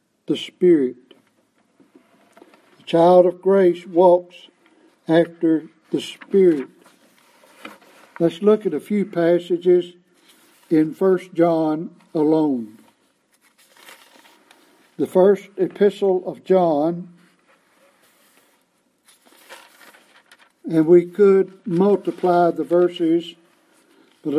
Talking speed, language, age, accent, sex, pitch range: 80 wpm, English, 60-79, American, male, 170-235 Hz